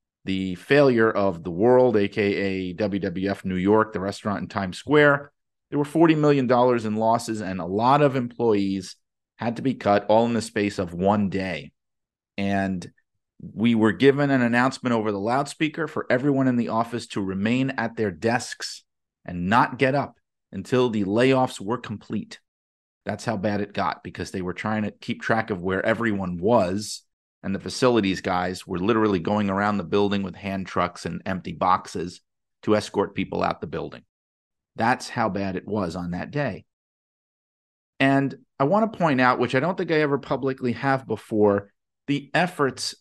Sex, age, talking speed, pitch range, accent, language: male, 30-49, 175 wpm, 95-125 Hz, American, English